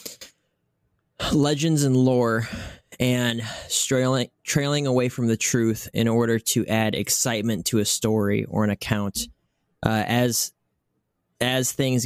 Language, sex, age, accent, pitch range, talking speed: English, male, 20-39, American, 110-125 Hz, 125 wpm